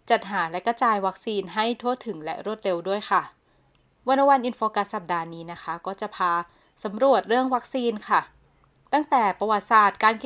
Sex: female